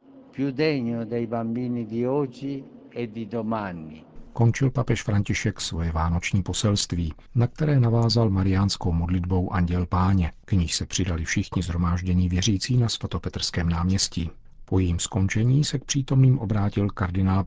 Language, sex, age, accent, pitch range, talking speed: Czech, male, 50-69, native, 85-105 Hz, 105 wpm